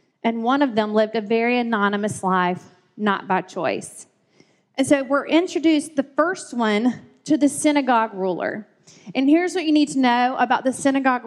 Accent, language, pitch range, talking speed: American, English, 210-270 Hz, 175 wpm